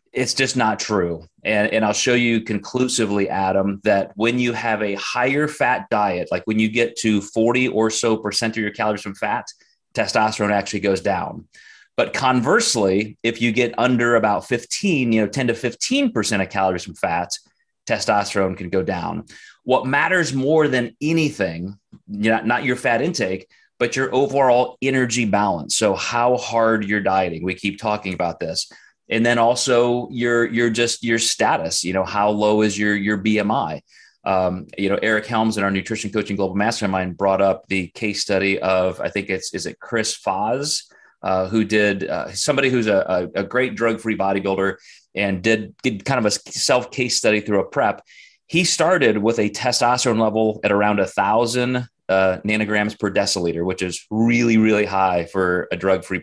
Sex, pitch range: male, 100-120 Hz